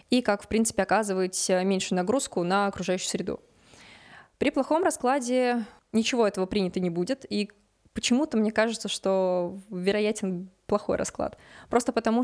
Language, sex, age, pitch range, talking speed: Russian, female, 20-39, 195-230 Hz, 135 wpm